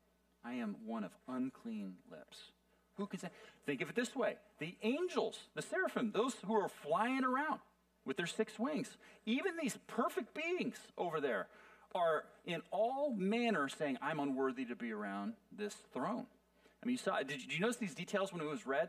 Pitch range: 195-220 Hz